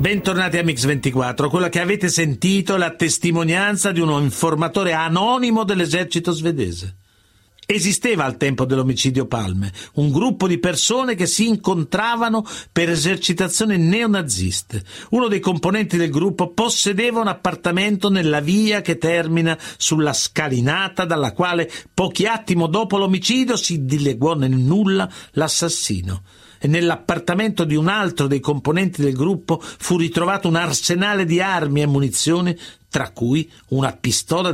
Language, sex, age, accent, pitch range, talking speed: Italian, male, 50-69, native, 150-195 Hz, 135 wpm